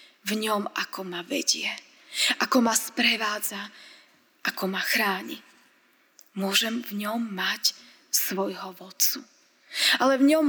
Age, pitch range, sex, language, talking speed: 20-39, 205-255 Hz, female, Slovak, 115 wpm